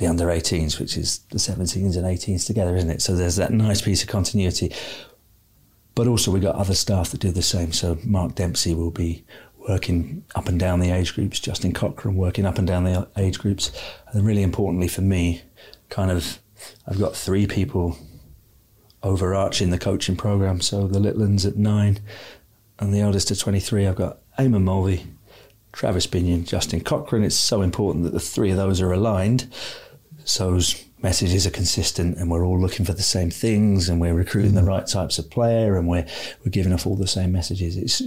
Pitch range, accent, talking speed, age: 90-105 Hz, British, 195 wpm, 40-59